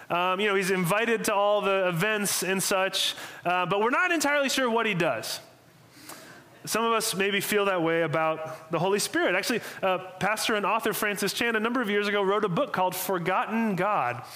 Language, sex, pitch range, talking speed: English, male, 160-220 Hz, 205 wpm